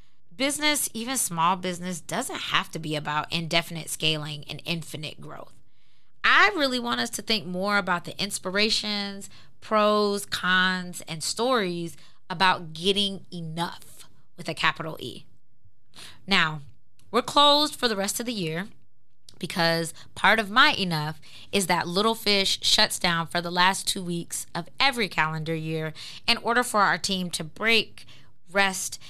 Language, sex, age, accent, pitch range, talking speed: English, female, 20-39, American, 160-210 Hz, 150 wpm